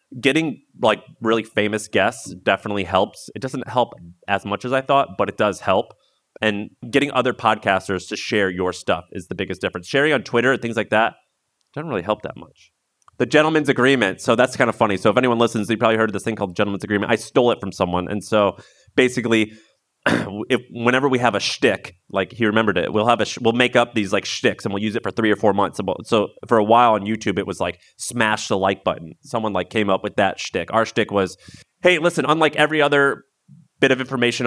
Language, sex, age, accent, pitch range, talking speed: English, male, 30-49, American, 110-135 Hz, 230 wpm